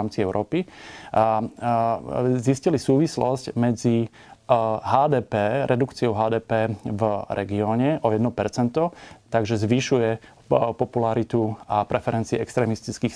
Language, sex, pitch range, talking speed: Slovak, male, 110-130 Hz, 80 wpm